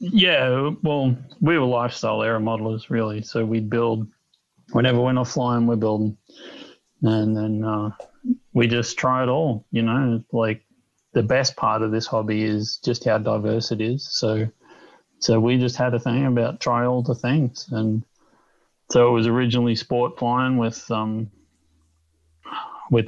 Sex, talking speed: male, 160 wpm